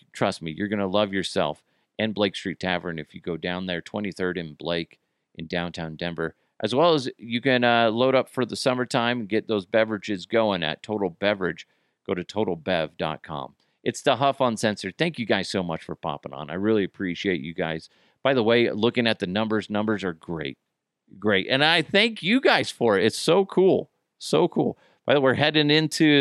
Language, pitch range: English, 95-135 Hz